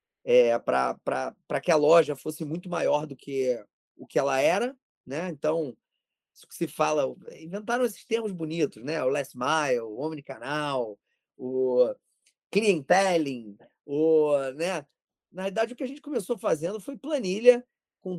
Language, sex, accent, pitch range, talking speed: Portuguese, male, Brazilian, 155-210 Hz, 145 wpm